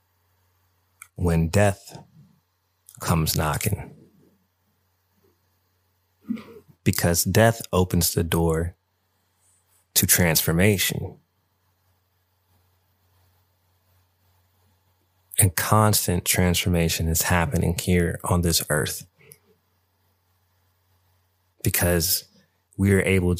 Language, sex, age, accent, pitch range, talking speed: English, male, 30-49, American, 90-100 Hz, 60 wpm